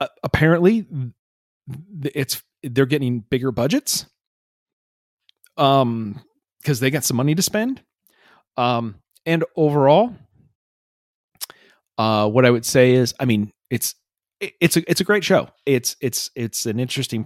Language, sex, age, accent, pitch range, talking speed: English, male, 30-49, American, 120-180 Hz, 130 wpm